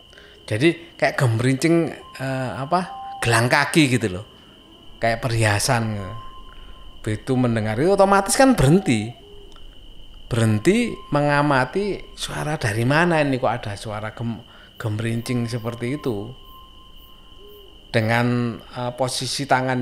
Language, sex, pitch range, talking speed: Indonesian, male, 115-150 Hz, 100 wpm